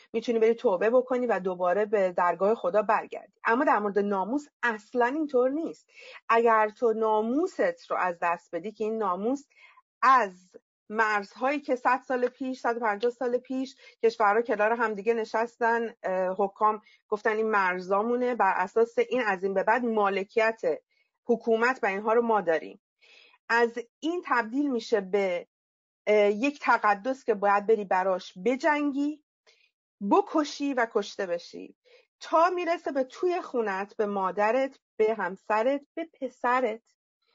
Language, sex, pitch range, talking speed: Persian, female, 200-260 Hz, 140 wpm